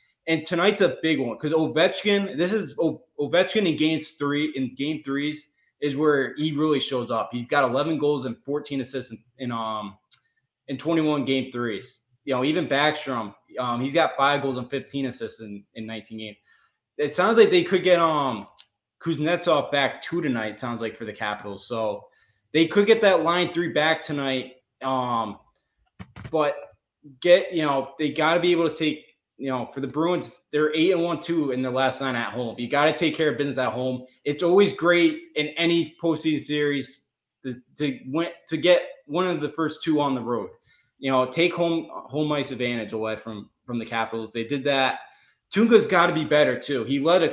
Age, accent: 20-39, American